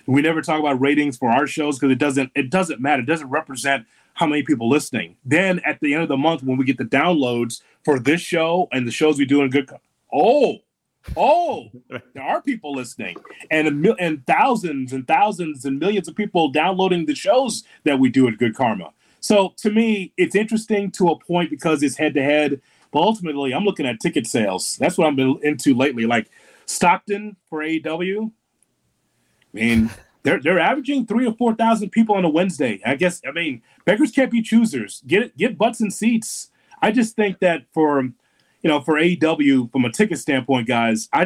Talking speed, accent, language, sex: 200 wpm, American, English, male